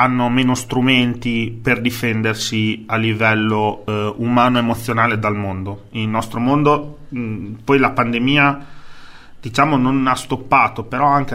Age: 30-49